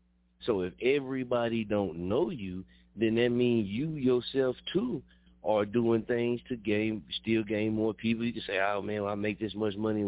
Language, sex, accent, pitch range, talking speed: English, male, American, 85-115 Hz, 195 wpm